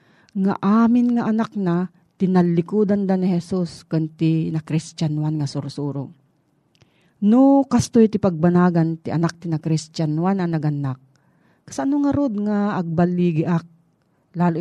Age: 40-59